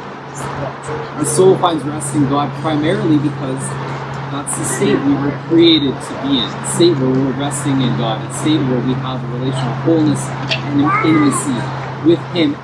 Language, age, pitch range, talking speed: English, 30-49, 135-160 Hz, 165 wpm